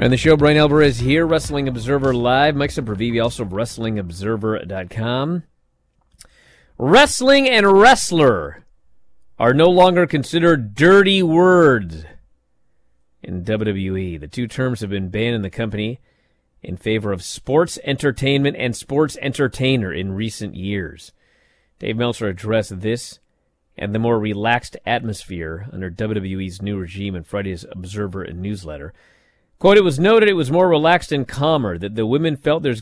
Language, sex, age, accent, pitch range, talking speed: English, male, 30-49, American, 100-145 Hz, 140 wpm